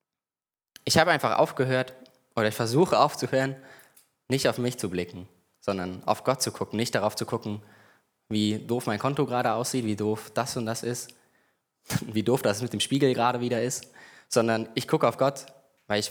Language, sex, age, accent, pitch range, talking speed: German, male, 20-39, German, 105-130 Hz, 185 wpm